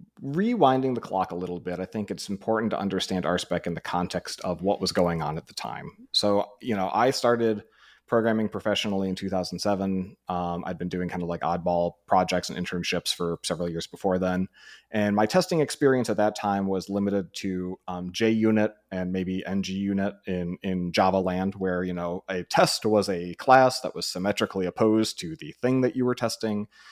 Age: 30-49